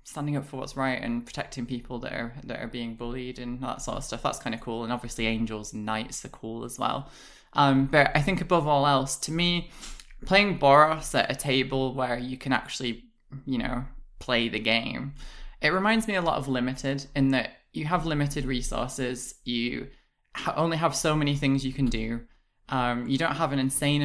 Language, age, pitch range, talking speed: English, 10-29, 125-150 Hz, 205 wpm